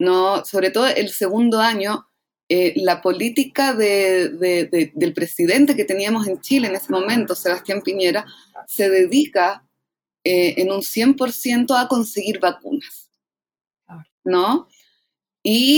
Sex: female